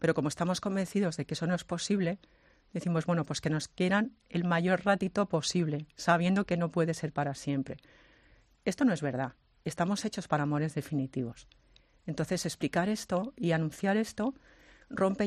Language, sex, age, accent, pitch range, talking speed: Spanish, female, 40-59, Spanish, 155-195 Hz, 170 wpm